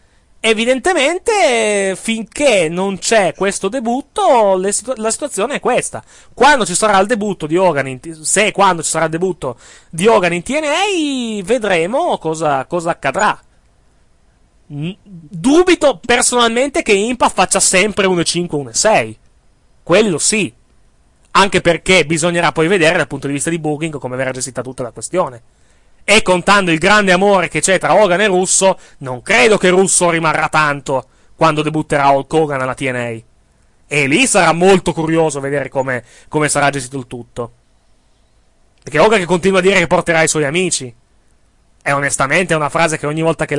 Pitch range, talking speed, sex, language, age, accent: 140-195 Hz, 145 wpm, male, Italian, 30-49, native